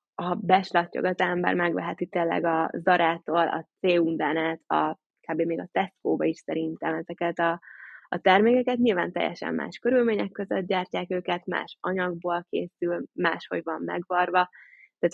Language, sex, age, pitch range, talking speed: Hungarian, female, 20-39, 165-190 Hz, 135 wpm